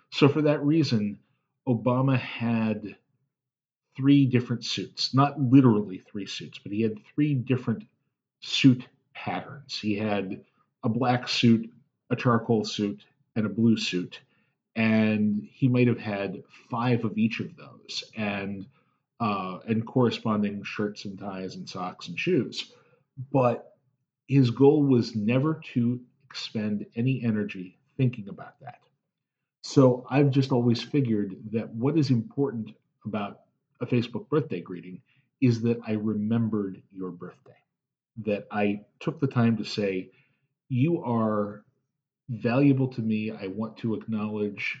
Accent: American